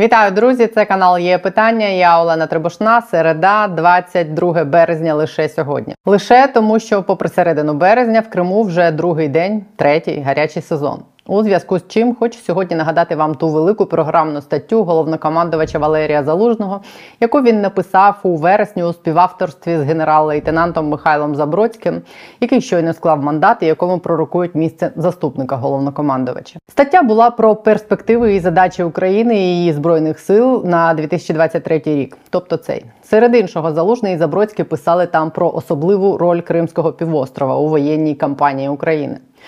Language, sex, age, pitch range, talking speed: Ukrainian, female, 20-39, 160-205 Hz, 145 wpm